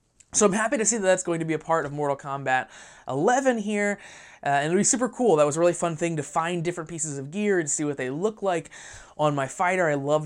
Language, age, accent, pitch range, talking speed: English, 20-39, American, 145-190 Hz, 270 wpm